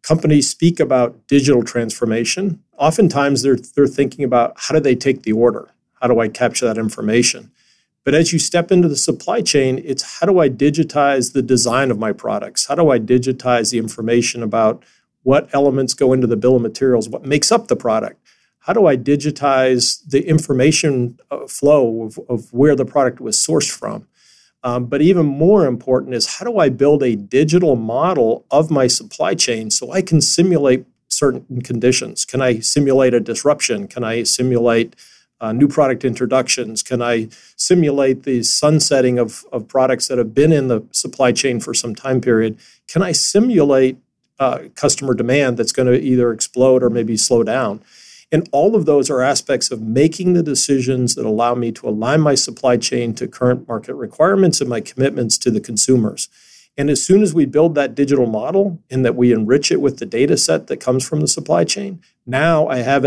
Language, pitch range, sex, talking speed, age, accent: English, 120-145 Hz, male, 190 wpm, 50-69, American